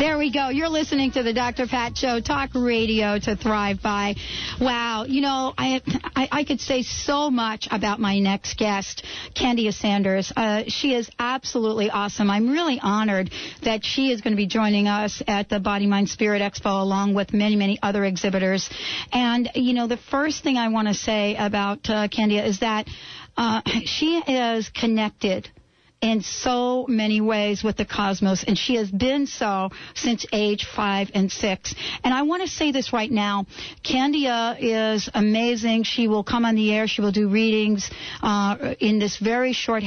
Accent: American